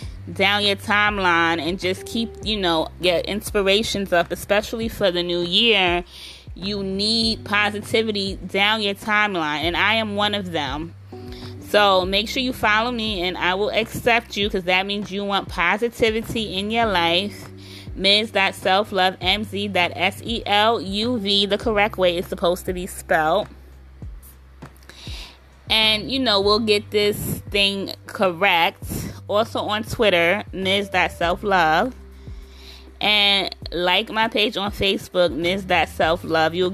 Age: 20-39